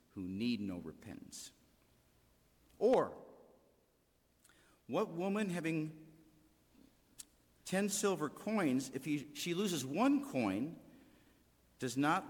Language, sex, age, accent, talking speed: English, male, 50-69, American, 90 wpm